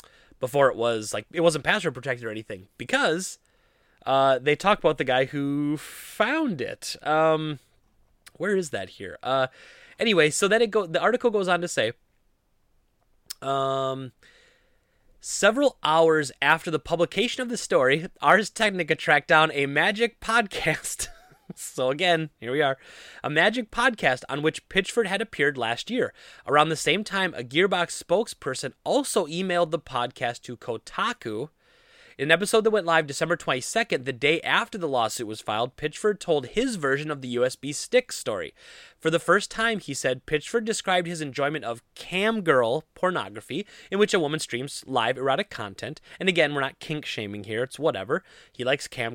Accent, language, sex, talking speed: American, English, male, 170 wpm